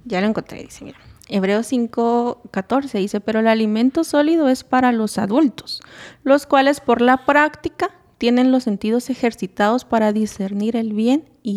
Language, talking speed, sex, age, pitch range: Spanish, 160 wpm, female, 20-39, 210-265 Hz